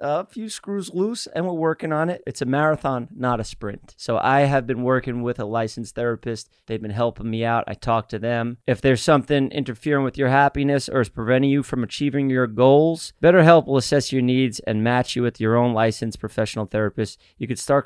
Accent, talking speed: American, 220 wpm